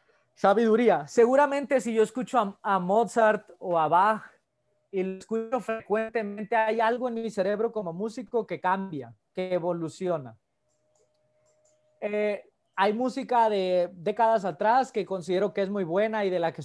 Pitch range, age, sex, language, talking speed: 180-225 Hz, 30-49, male, Spanish, 150 wpm